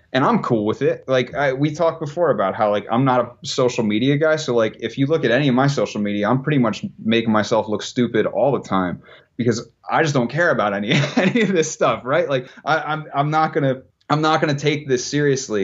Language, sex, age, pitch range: English, male, 30-49, 105-135 Hz